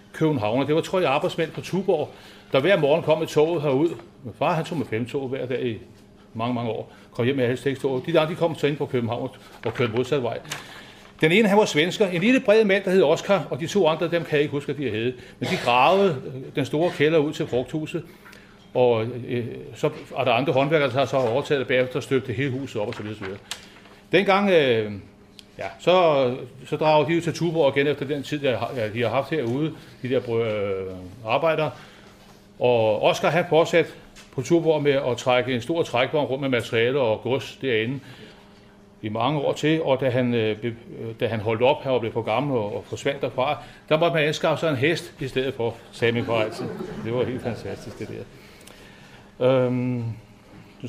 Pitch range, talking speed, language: 115-155 Hz, 210 wpm, Danish